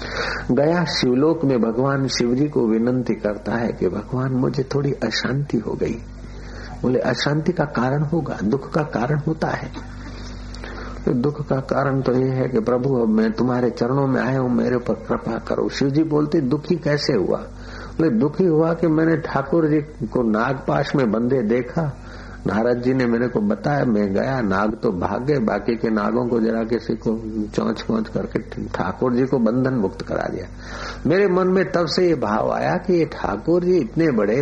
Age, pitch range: 60-79, 120-160 Hz